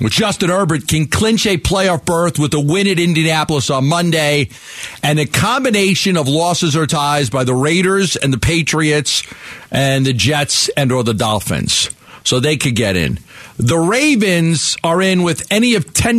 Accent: American